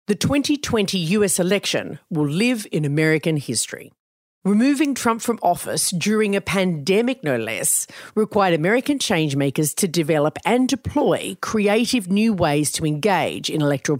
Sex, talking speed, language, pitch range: female, 135 wpm, English, 155-230 Hz